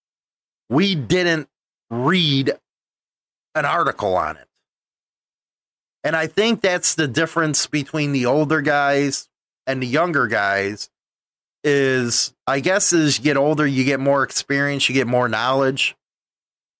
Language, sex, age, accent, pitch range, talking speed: English, male, 30-49, American, 140-160 Hz, 130 wpm